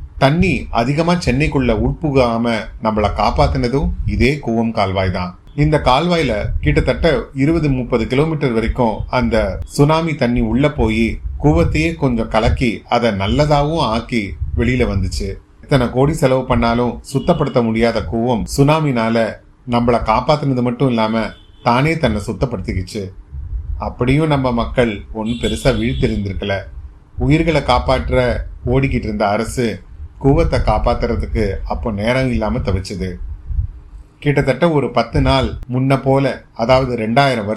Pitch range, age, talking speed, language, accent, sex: 95-130 Hz, 30-49, 75 wpm, Tamil, native, male